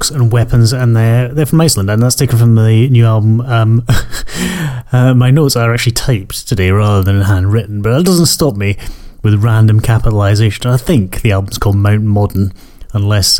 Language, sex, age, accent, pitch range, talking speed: English, male, 30-49, British, 95-120 Hz, 185 wpm